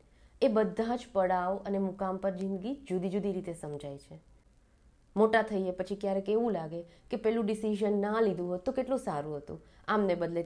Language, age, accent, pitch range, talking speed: Gujarati, 20-39, native, 180-230 Hz, 180 wpm